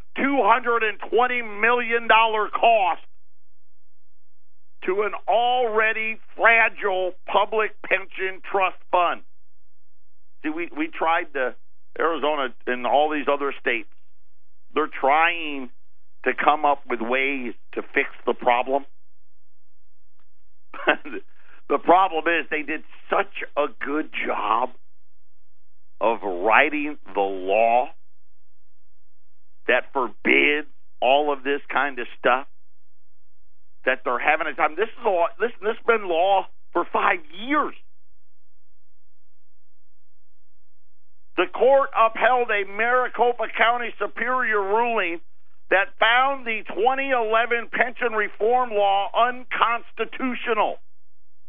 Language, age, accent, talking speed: English, 50-69, American, 100 wpm